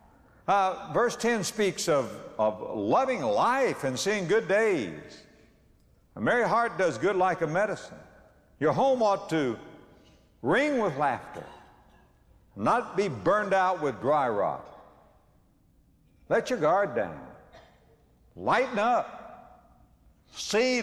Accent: American